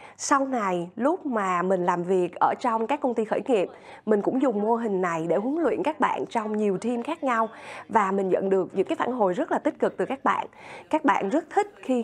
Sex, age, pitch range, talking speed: female, 20-39, 210-275 Hz, 250 wpm